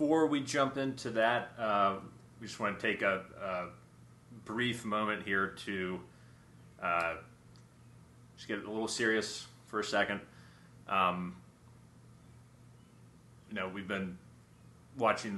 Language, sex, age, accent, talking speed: English, male, 30-49, American, 130 wpm